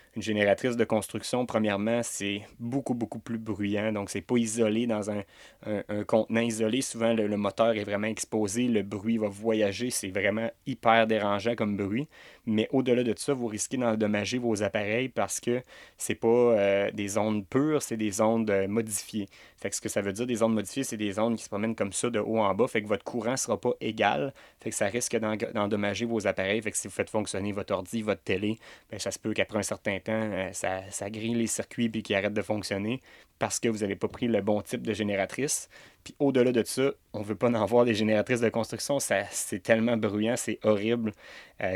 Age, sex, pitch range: 30-49, male, 100-115 Hz